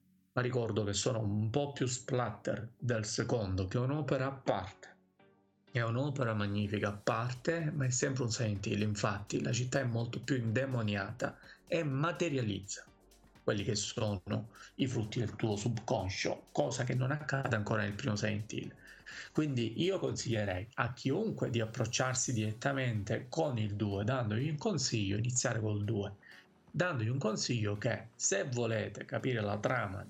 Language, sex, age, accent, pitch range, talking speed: Italian, male, 40-59, native, 110-135 Hz, 150 wpm